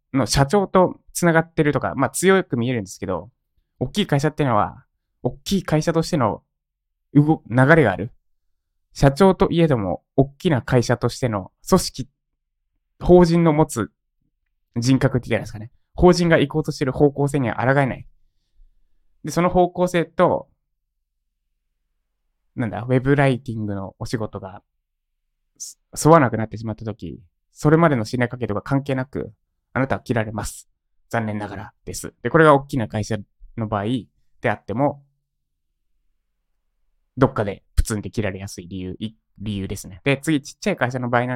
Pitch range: 100-145 Hz